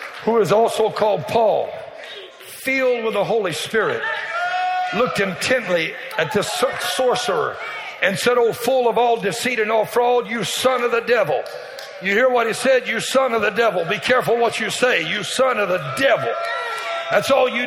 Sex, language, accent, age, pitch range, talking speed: male, English, American, 60-79, 240-325 Hz, 180 wpm